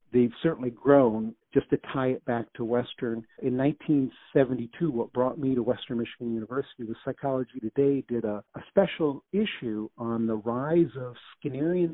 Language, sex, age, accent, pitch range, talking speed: English, male, 50-69, American, 115-145 Hz, 160 wpm